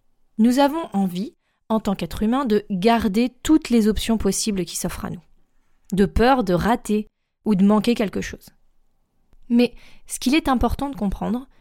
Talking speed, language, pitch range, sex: 170 wpm, French, 200-255 Hz, female